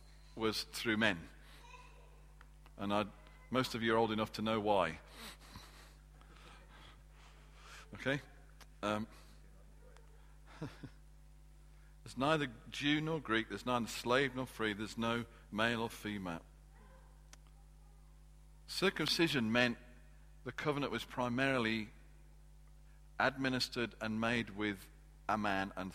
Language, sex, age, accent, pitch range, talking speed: English, male, 50-69, British, 105-140 Hz, 100 wpm